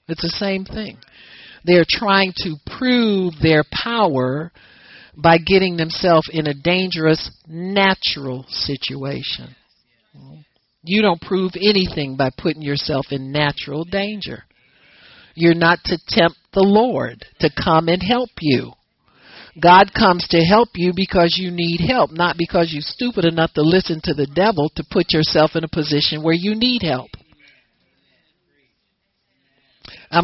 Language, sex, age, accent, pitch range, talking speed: English, male, 50-69, American, 150-190 Hz, 135 wpm